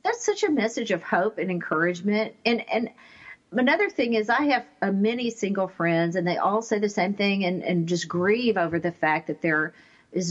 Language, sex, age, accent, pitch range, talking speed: English, female, 50-69, American, 170-220 Hz, 210 wpm